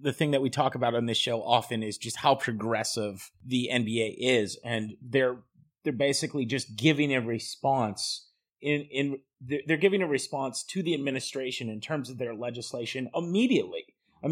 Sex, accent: male, American